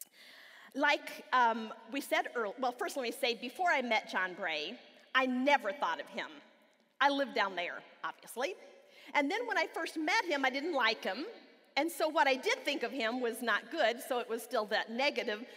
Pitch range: 235-330 Hz